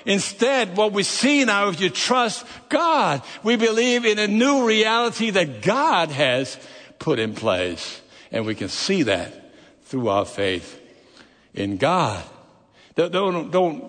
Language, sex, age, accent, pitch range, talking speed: English, male, 60-79, American, 140-210 Hz, 140 wpm